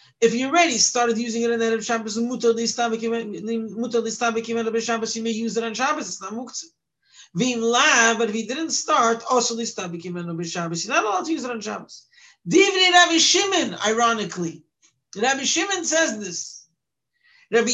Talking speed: 150 wpm